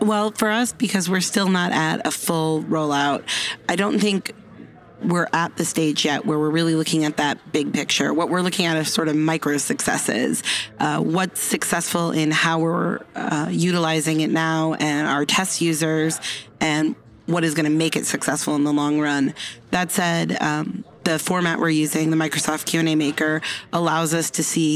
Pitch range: 155-185 Hz